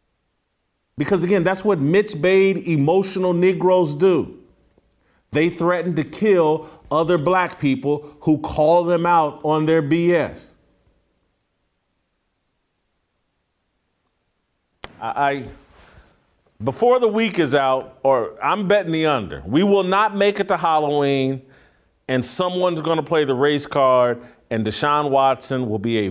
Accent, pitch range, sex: American, 115-155 Hz, male